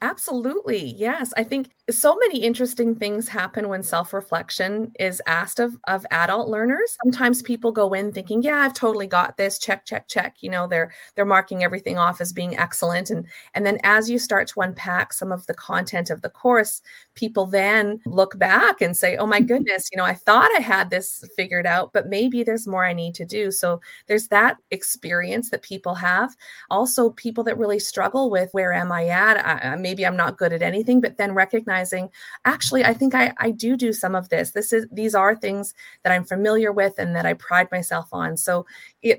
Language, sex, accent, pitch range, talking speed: English, female, American, 180-230 Hz, 210 wpm